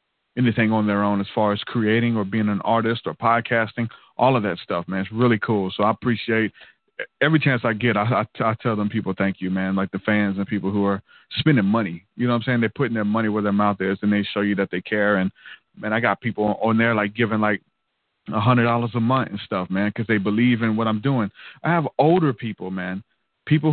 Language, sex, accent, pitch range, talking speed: English, male, American, 105-140 Hz, 250 wpm